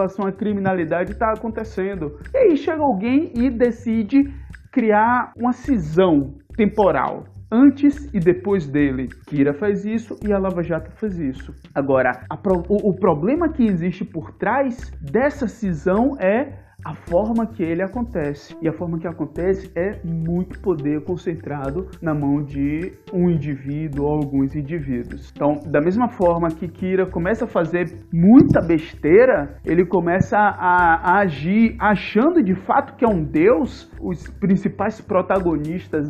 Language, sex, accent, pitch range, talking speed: Portuguese, male, Brazilian, 155-220 Hz, 150 wpm